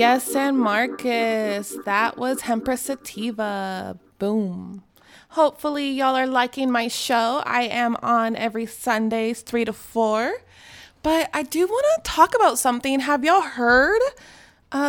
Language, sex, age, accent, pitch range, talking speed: English, female, 20-39, American, 240-285 Hz, 135 wpm